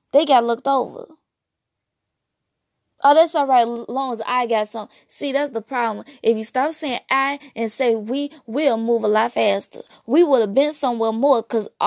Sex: female